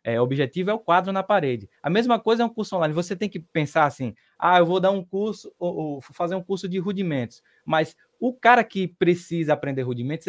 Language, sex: Portuguese, male